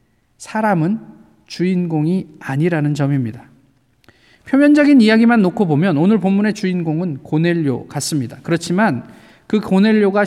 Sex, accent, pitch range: male, native, 155-230 Hz